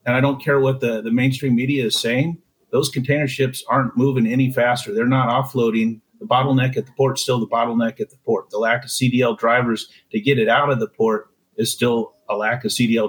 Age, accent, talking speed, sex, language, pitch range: 50-69, American, 235 wpm, male, English, 115-140 Hz